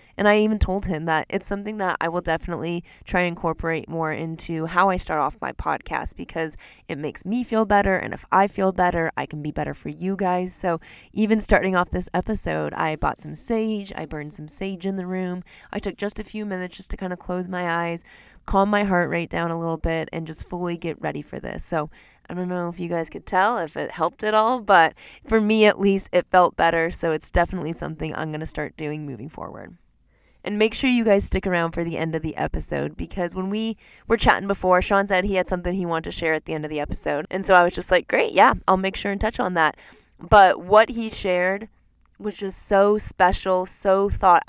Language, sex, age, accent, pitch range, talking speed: English, female, 20-39, American, 165-200 Hz, 240 wpm